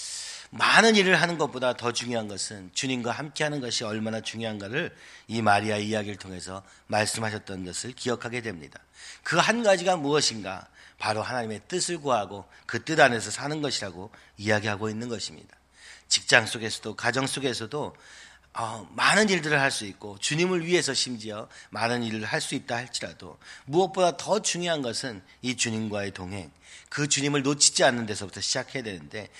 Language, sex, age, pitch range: Korean, male, 40-59, 105-145 Hz